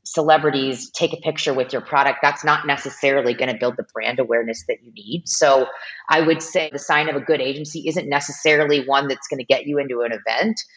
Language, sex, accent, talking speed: English, female, American, 225 wpm